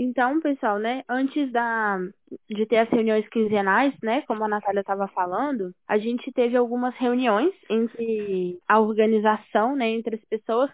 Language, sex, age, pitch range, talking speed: Portuguese, female, 10-29, 215-250 Hz, 155 wpm